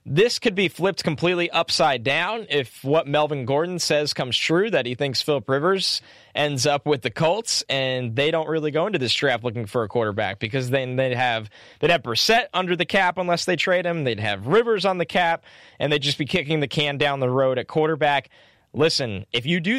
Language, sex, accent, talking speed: English, male, American, 220 wpm